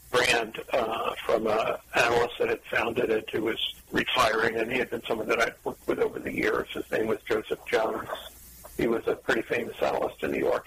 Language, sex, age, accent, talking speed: English, male, 60-79, American, 215 wpm